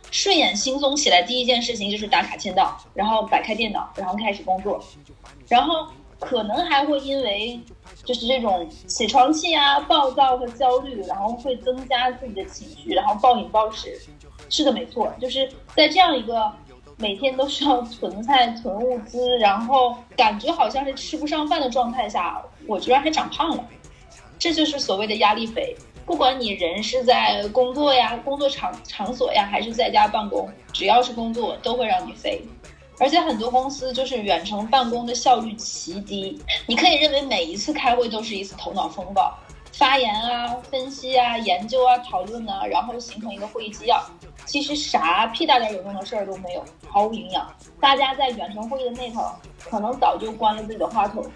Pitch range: 215-275 Hz